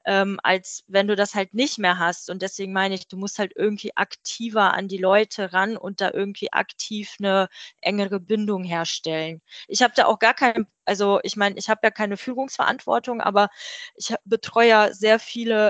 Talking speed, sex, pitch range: 190 wpm, female, 180-210 Hz